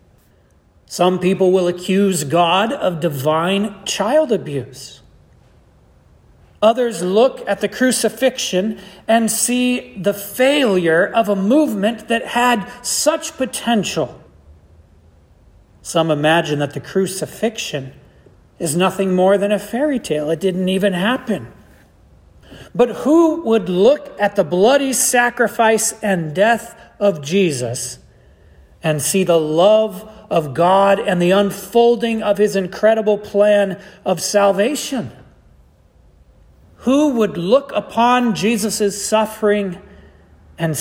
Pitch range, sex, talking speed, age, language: 155-220 Hz, male, 110 wpm, 40-59, English